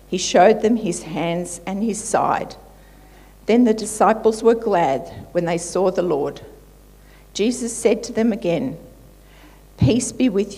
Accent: Australian